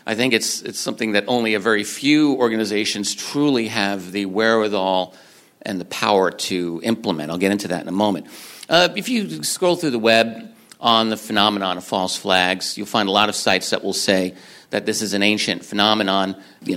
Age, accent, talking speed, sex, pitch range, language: 50-69, American, 200 wpm, male, 95-125 Hz, English